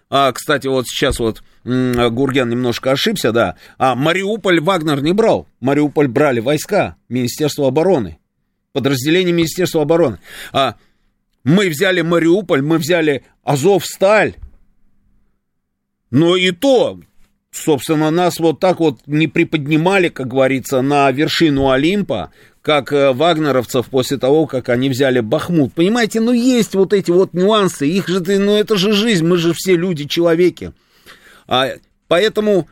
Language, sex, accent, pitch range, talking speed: Russian, male, native, 140-185 Hz, 130 wpm